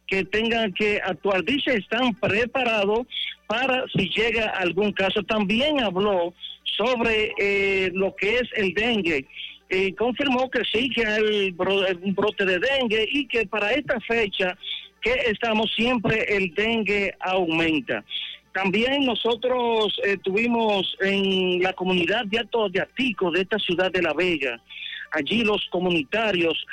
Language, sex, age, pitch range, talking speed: Spanish, male, 50-69, 190-230 Hz, 135 wpm